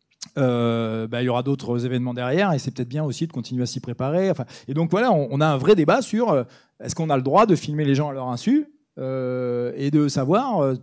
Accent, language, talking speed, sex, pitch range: French, French, 260 wpm, male, 130-170 Hz